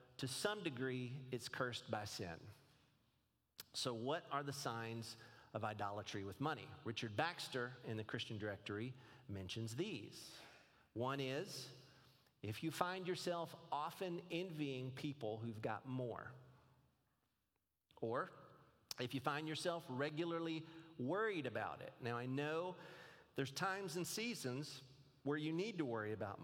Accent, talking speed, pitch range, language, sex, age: American, 130 wpm, 125-155 Hz, English, male, 40-59